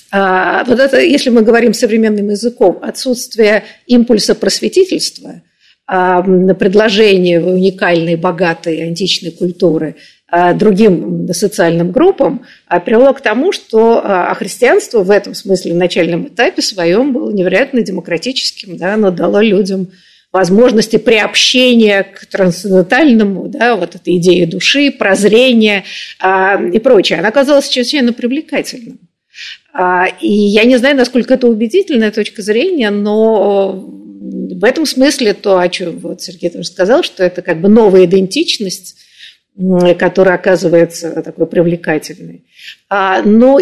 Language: Russian